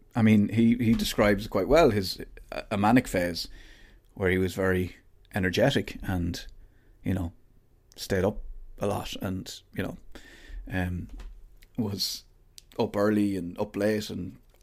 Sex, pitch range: male, 95-120 Hz